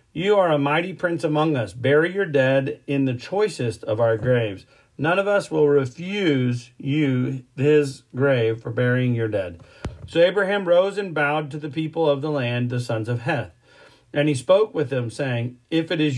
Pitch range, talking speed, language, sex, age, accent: 125-160 Hz, 195 wpm, English, male, 40-59, American